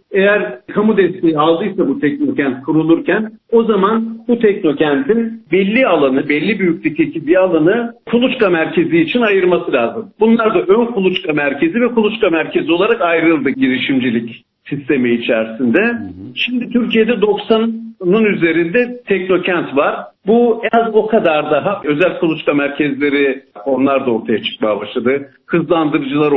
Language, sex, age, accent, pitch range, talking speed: Turkish, male, 50-69, native, 155-225 Hz, 125 wpm